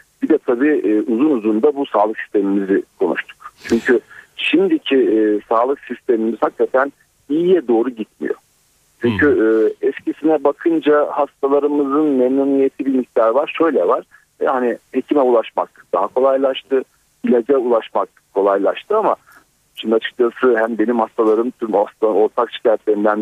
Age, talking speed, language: 50-69, 115 wpm, Turkish